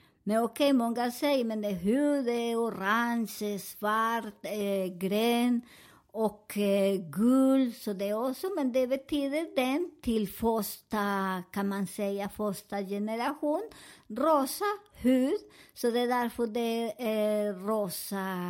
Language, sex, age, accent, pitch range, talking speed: Swedish, male, 50-69, American, 210-270 Hz, 135 wpm